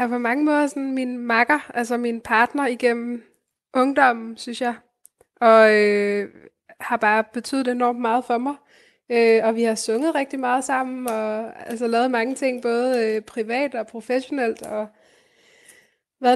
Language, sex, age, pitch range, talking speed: Danish, female, 20-39, 225-260 Hz, 160 wpm